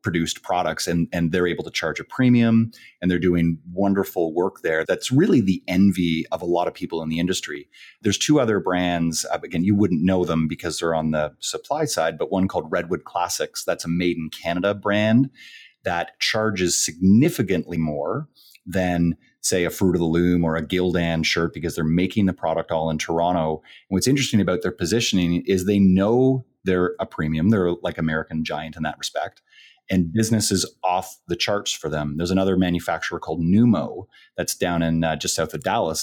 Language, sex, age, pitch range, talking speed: English, male, 30-49, 85-110 Hz, 195 wpm